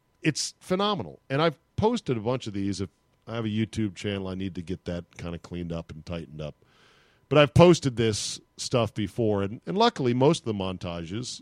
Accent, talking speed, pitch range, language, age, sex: American, 210 wpm, 95-125 Hz, English, 40-59, male